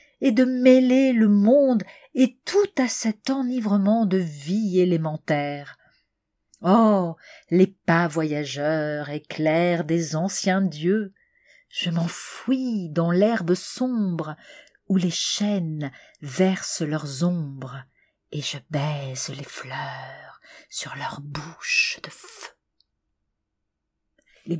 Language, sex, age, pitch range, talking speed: French, female, 40-59, 155-235 Hz, 105 wpm